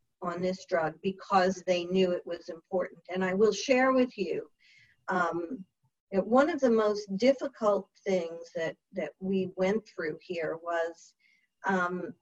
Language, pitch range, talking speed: English, 185-235 Hz, 150 wpm